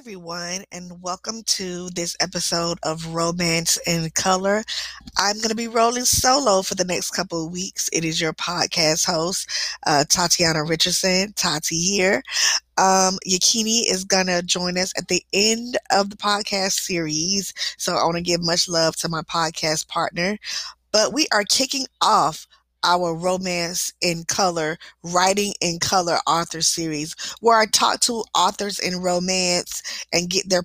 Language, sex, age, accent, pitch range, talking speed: English, female, 20-39, American, 170-200 Hz, 155 wpm